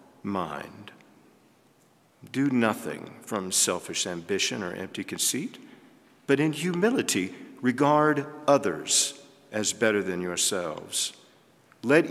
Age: 50-69